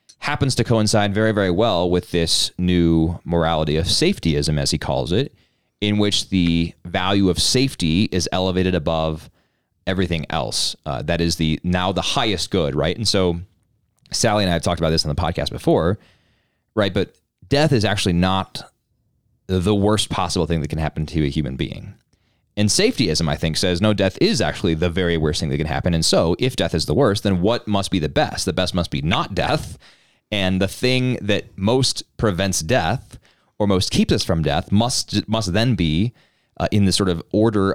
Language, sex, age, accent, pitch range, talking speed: English, male, 30-49, American, 80-105 Hz, 195 wpm